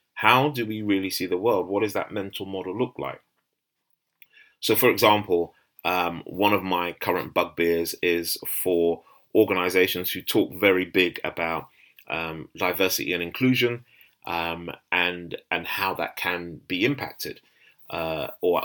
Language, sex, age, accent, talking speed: English, male, 30-49, British, 145 wpm